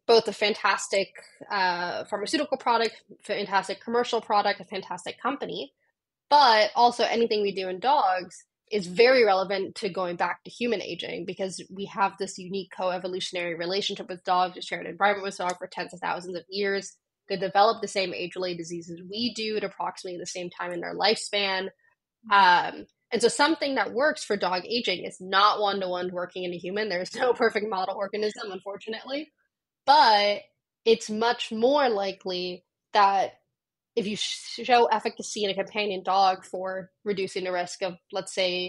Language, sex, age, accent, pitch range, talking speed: English, female, 10-29, American, 185-215 Hz, 170 wpm